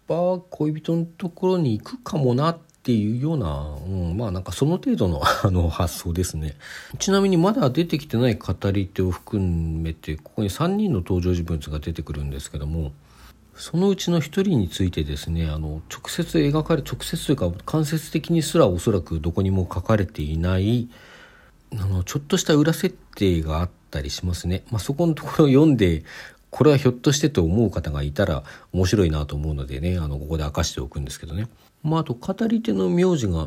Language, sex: Japanese, male